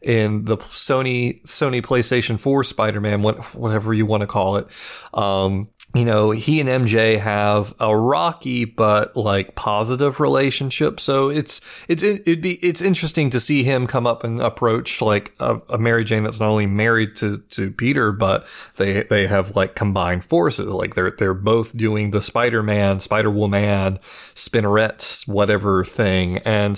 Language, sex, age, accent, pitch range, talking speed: English, male, 30-49, American, 105-135 Hz, 165 wpm